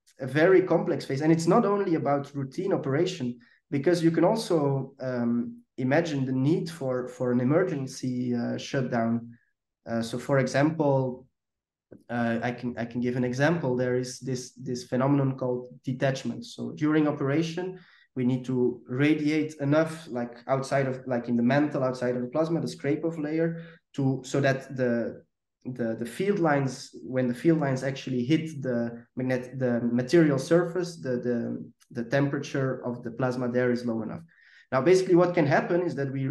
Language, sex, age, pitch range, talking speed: English, male, 20-39, 125-155 Hz, 175 wpm